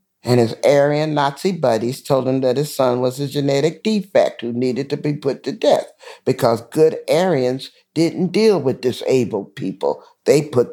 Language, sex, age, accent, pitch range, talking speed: English, male, 50-69, American, 125-180 Hz, 175 wpm